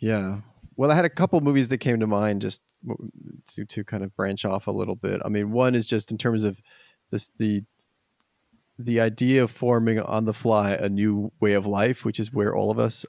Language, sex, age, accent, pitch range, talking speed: English, male, 30-49, American, 100-120 Hz, 230 wpm